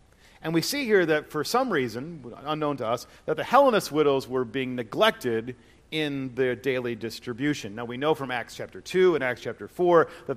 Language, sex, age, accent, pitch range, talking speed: English, male, 40-59, American, 130-170 Hz, 195 wpm